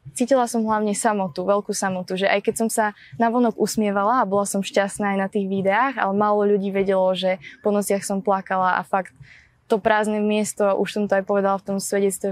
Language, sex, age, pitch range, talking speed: Slovak, female, 20-39, 195-220 Hz, 215 wpm